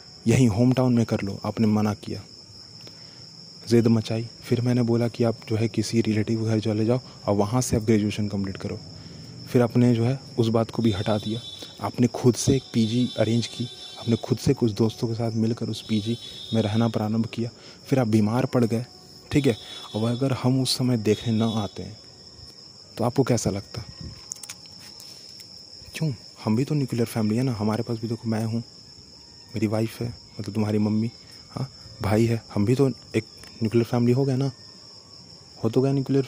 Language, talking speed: Hindi, 195 wpm